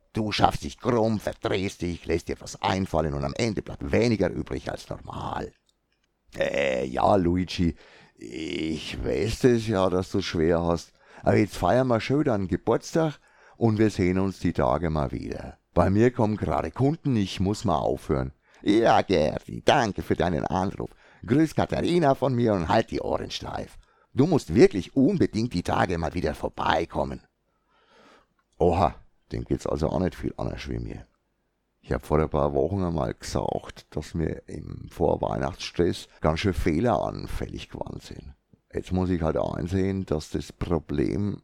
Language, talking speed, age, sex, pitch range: German, 165 wpm, 60-79, male, 80-110 Hz